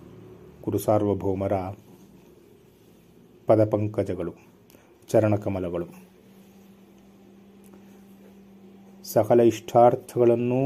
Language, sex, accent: Kannada, male, native